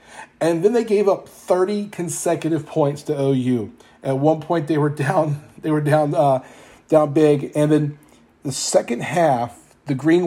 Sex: male